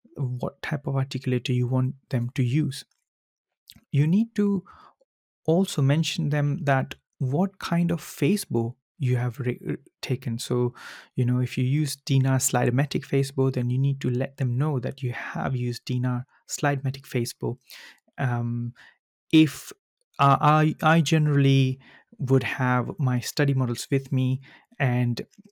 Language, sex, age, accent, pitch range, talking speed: English, male, 30-49, Indian, 125-145 Hz, 145 wpm